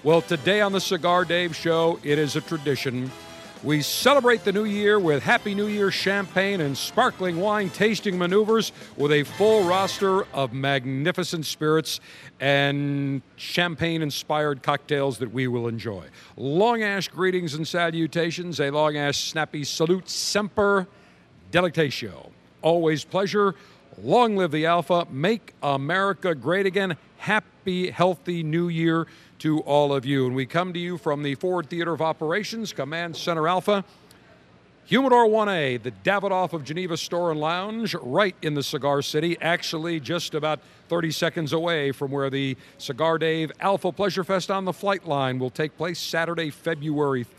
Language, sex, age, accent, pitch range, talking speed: English, male, 50-69, American, 145-185 Hz, 150 wpm